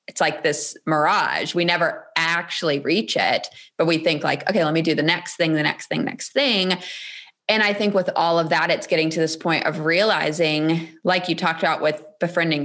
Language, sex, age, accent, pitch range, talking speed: English, female, 20-39, American, 160-200 Hz, 215 wpm